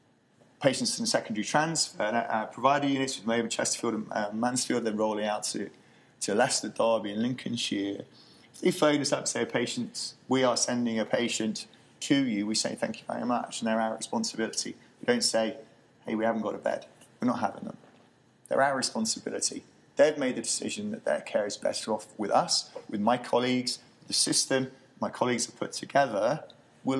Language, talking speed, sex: English, 195 wpm, male